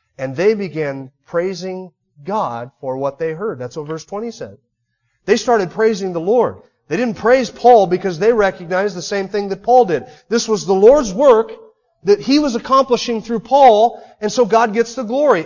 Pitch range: 140-235 Hz